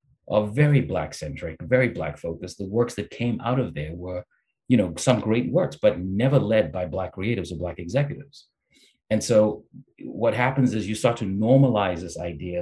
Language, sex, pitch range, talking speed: English, male, 90-120 Hz, 190 wpm